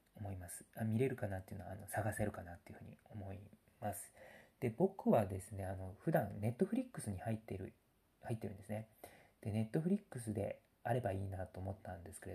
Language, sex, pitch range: Japanese, male, 95-120 Hz